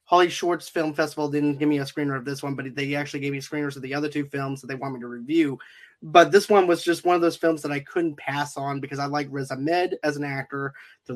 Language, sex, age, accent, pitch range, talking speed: English, male, 20-39, American, 140-170 Hz, 280 wpm